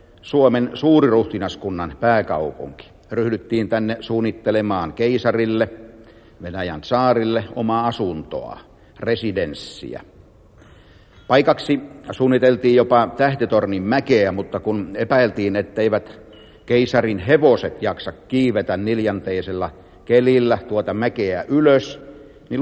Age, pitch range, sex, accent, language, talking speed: 60-79, 100-120 Hz, male, native, Finnish, 85 wpm